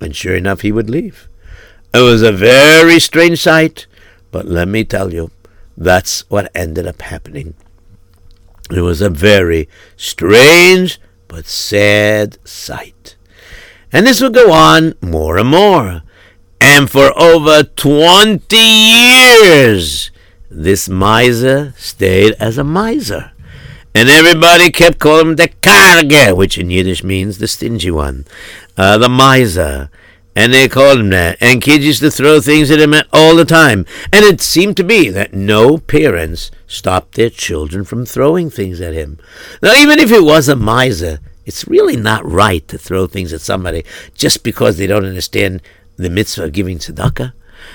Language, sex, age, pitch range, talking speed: English, male, 60-79, 95-150 Hz, 155 wpm